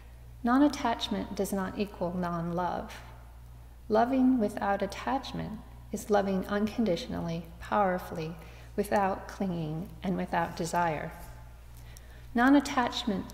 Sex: female